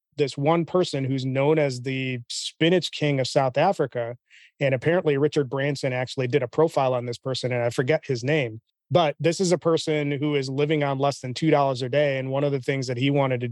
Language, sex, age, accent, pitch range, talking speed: English, male, 30-49, American, 135-155 Hz, 225 wpm